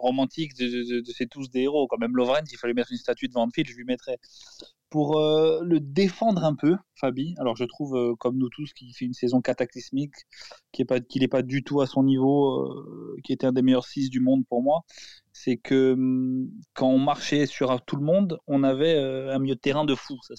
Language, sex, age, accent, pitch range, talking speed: French, male, 20-39, French, 125-150 Hz, 240 wpm